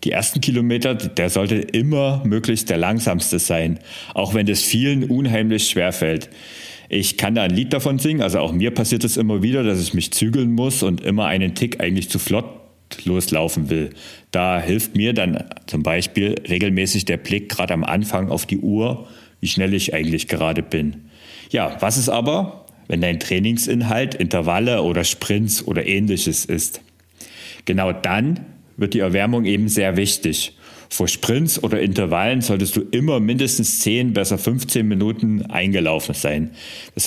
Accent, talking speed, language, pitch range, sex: German, 165 wpm, German, 90-115 Hz, male